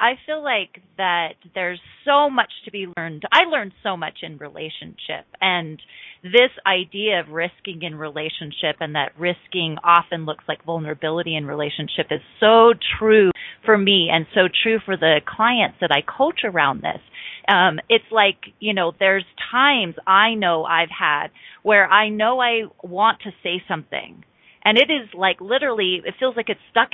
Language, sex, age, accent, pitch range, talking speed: English, female, 30-49, American, 170-225 Hz, 170 wpm